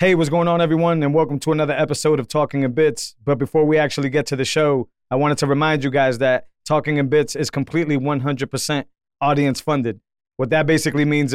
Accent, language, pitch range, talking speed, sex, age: American, English, 130-145 Hz, 215 wpm, male, 30-49